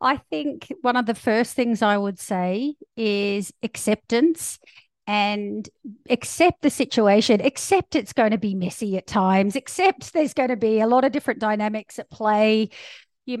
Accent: Australian